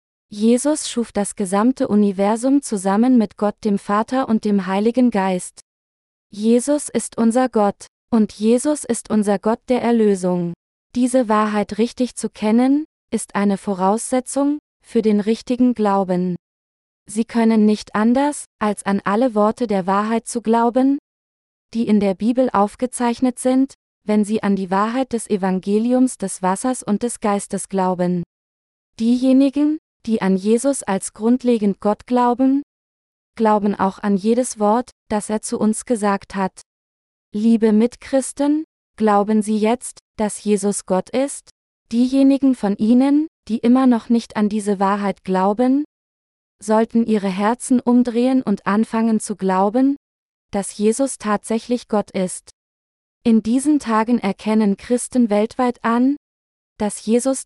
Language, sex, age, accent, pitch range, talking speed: German, female, 20-39, German, 200-245 Hz, 135 wpm